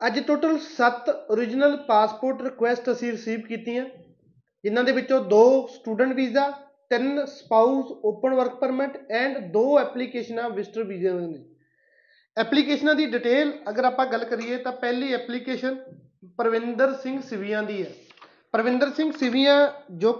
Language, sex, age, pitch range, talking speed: Punjabi, male, 30-49, 220-265 Hz, 135 wpm